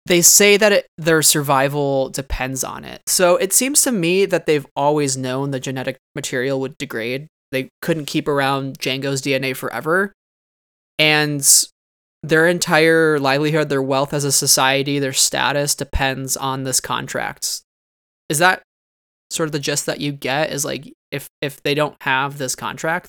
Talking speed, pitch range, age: 160 wpm, 135-155 Hz, 20-39